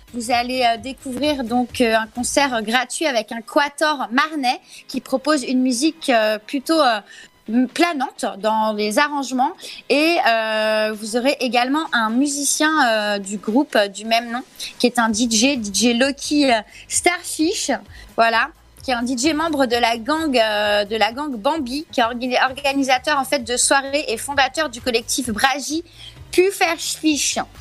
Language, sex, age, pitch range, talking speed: French, female, 20-39, 240-305 Hz, 140 wpm